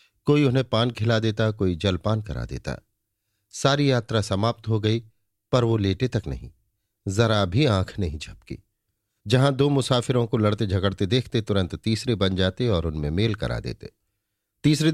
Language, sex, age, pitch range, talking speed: Hindi, male, 50-69, 100-120 Hz, 165 wpm